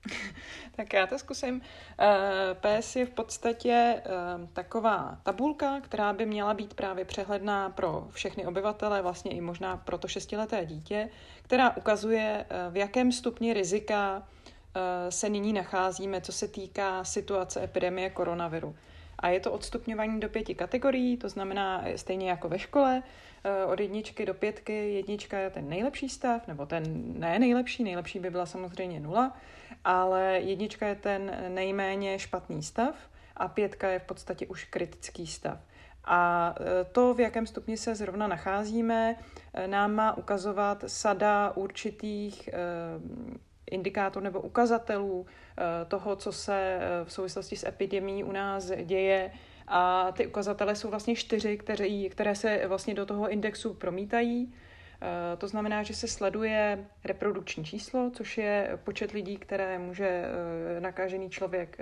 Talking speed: 135 wpm